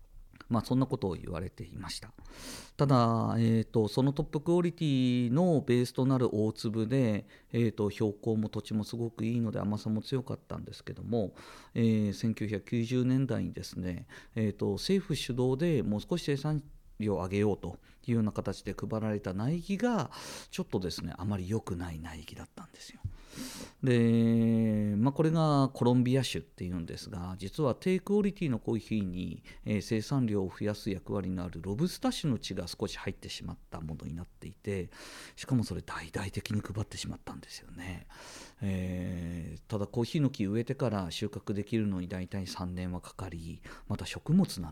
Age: 40-59